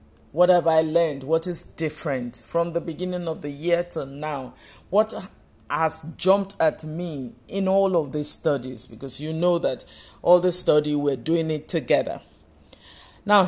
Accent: Nigerian